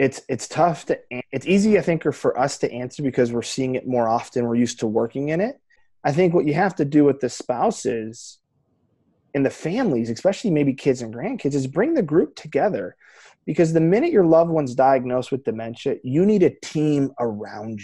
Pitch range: 125-155 Hz